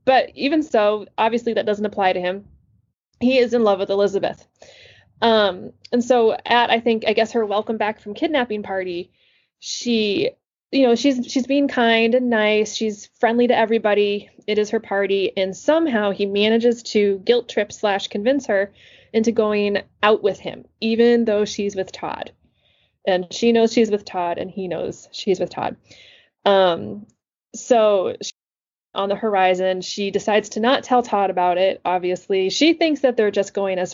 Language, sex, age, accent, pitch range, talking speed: English, female, 20-39, American, 195-230 Hz, 175 wpm